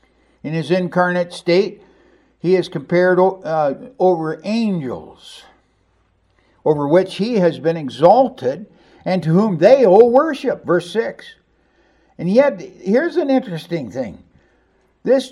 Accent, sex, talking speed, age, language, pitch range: American, male, 120 wpm, 60-79, English, 170-260 Hz